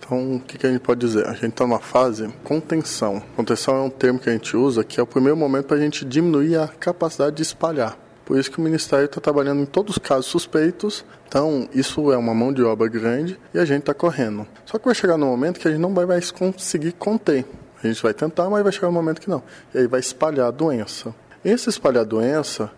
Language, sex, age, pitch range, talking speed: Portuguese, male, 20-39, 125-170 Hz, 255 wpm